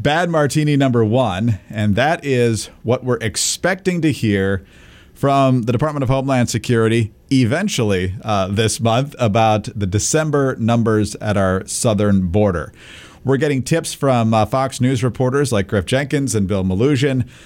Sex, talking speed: male, 150 wpm